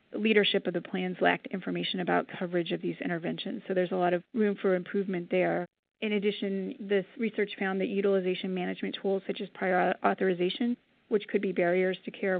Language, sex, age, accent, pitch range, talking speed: English, female, 30-49, American, 185-210 Hz, 190 wpm